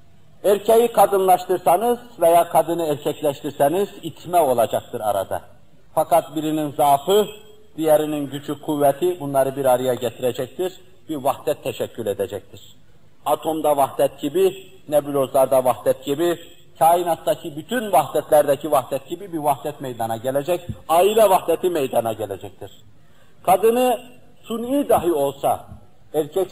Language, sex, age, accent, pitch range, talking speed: Turkish, male, 50-69, native, 140-180 Hz, 105 wpm